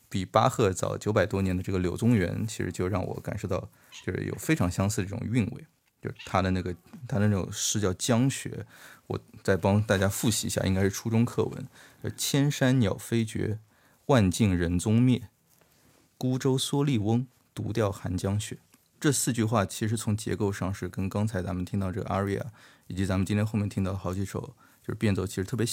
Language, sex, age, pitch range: Chinese, male, 20-39, 95-120 Hz